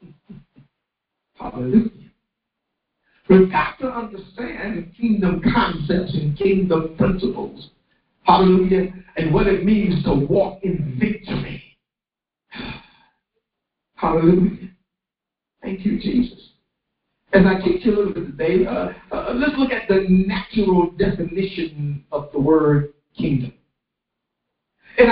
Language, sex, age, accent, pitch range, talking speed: English, male, 60-79, American, 165-210 Hz, 100 wpm